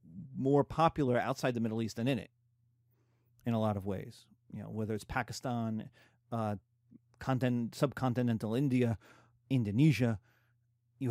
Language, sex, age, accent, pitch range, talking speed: English, male, 40-59, American, 120-175 Hz, 135 wpm